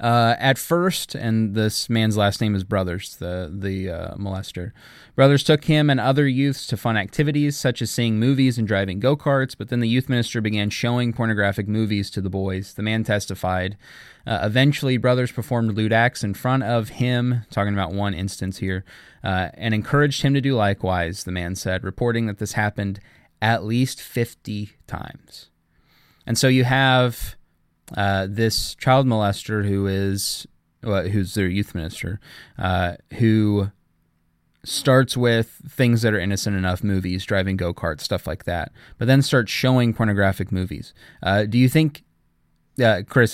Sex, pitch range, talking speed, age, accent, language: male, 95-125 Hz, 165 wpm, 20-39, American, English